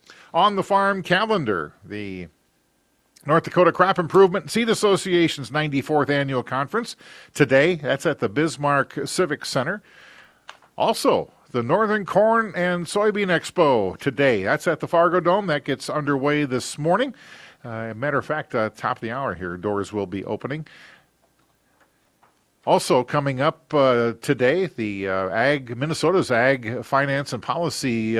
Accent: American